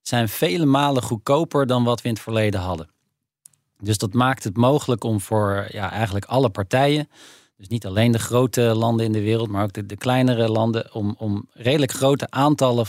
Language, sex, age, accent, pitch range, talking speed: Dutch, male, 40-59, Dutch, 110-135 Hz, 190 wpm